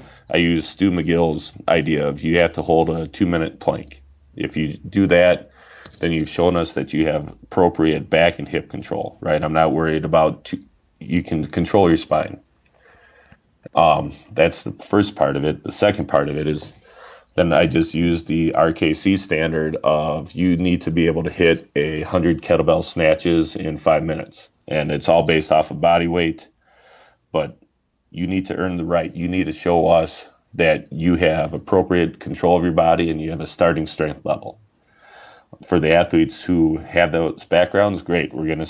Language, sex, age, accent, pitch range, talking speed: English, male, 30-49, American, 80-85 Hz, 185 wpm